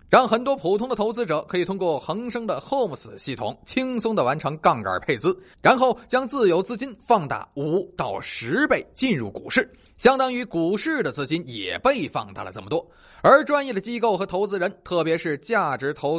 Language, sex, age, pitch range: Chinese, male, 30-49, 175-240 Hz